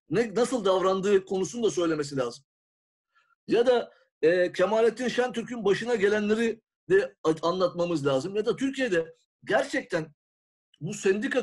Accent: native